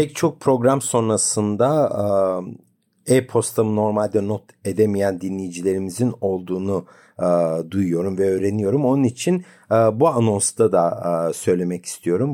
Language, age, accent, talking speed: Turkish, 50-69, native, 95 wpm